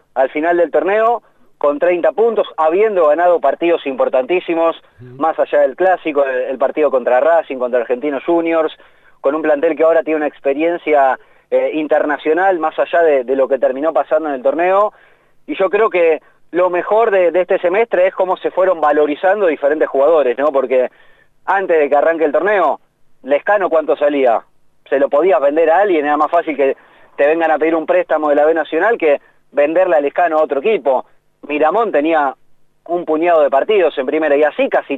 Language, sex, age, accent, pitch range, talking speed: Spanish, male, 30-49, Argentinian, 145-190 Hz, 185 wpm